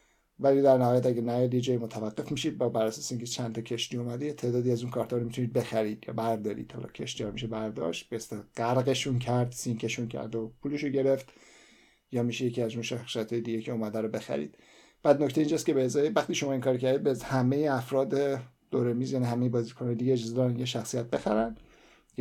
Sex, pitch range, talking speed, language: male, 115-135 Hz, 205 wpm, Persian